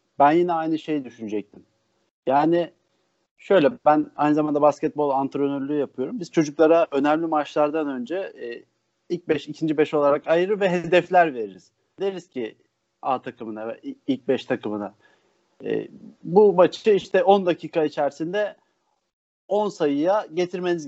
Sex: male